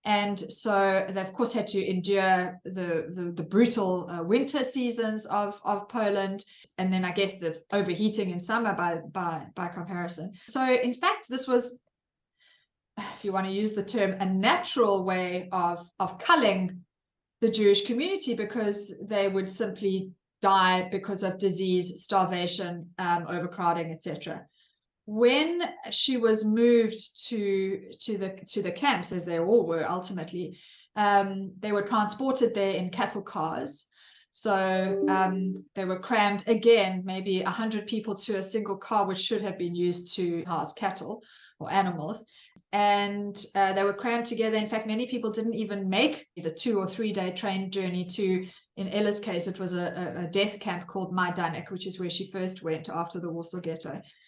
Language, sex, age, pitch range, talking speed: English, female, 20-39, 180-215 Hz, 170 wpm